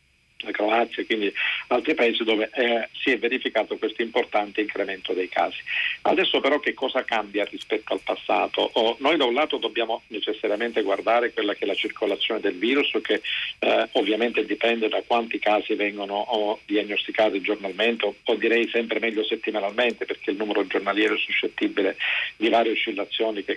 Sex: male